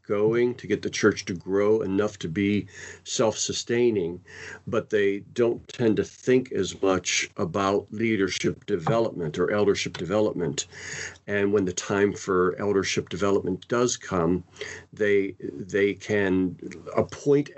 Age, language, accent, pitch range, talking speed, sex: 50-69, English, American, 95-120 Hz, 130 wpm, male